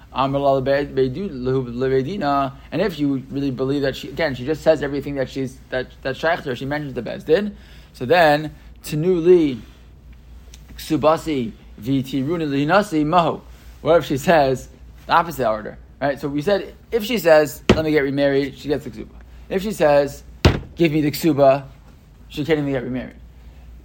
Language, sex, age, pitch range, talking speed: English, male, 20-39, 130-165 Hz, 145 wpm